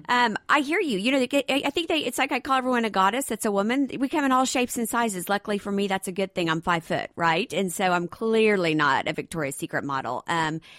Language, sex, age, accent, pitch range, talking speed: English, female, 50-69, American, 185-245 Hz, 275 wpm